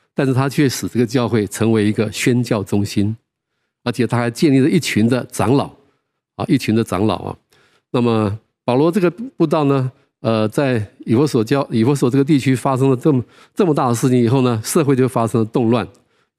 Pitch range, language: 110-135 Hz, Chinese